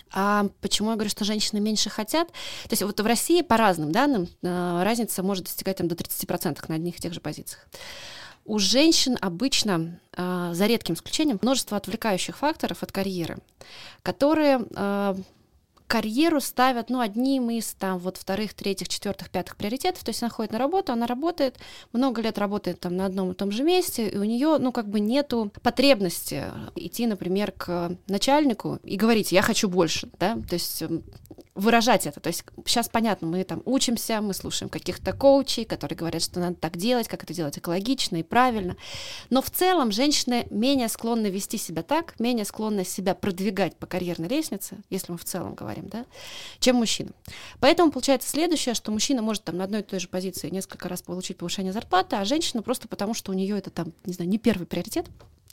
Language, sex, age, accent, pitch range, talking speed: Russian, female, 20-39, native, 185-245 Hz, 185 wpm